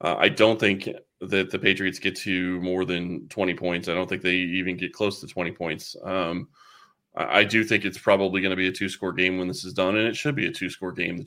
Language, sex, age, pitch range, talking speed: English, male, 20-39, 95-115 Hz, 255 wpm